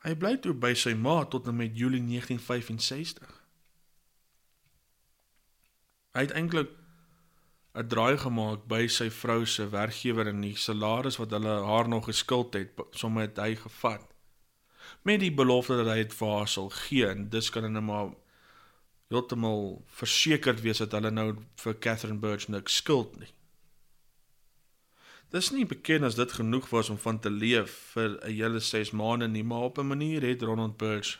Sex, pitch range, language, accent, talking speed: male, 110-130 Hz, English, Dutch, 165 wpm